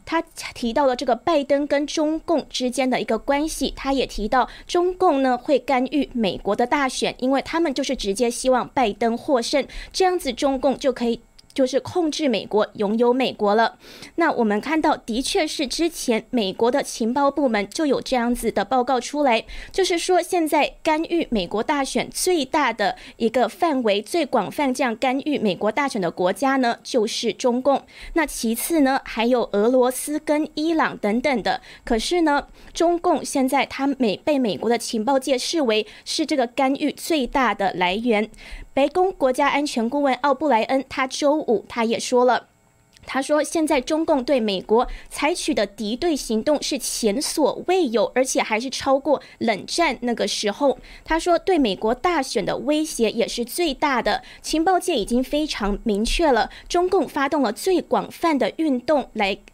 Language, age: Chinese, 20-39